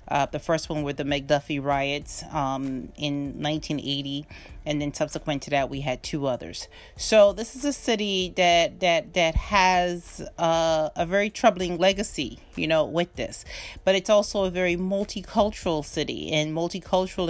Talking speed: 165 wpm